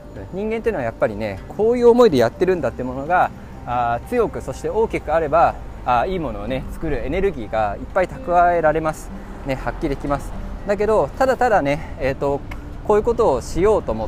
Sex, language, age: male, Japanese, 20-39